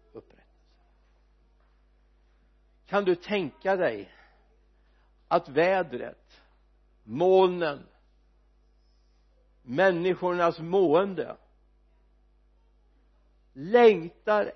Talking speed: 40 wpm